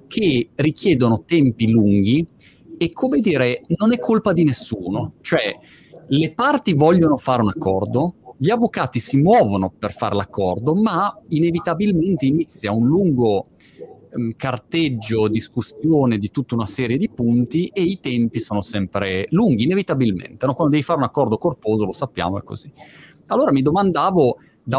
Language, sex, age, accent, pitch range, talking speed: Italian, male, 30-49, native, 110-140 Hz, 145 wpm